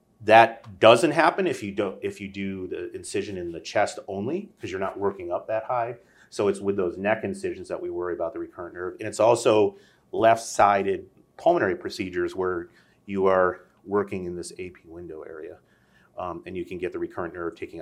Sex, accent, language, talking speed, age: male, American, English, 200 wpm, 30-49